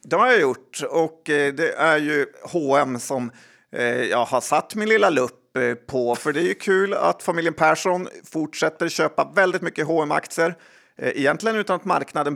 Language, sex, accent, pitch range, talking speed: Swedish, male, native, 130-170 Hz, 165 wpm